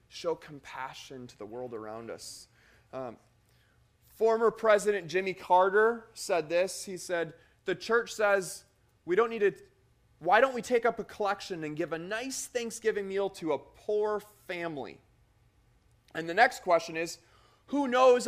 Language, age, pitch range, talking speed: English, 20-39, 165-250 Hz, 155 wpm